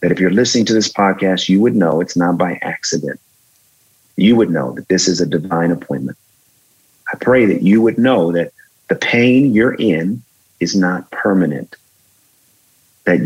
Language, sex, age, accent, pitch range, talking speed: English, male, 30-49, American, 90-125 Hz, 170 wpm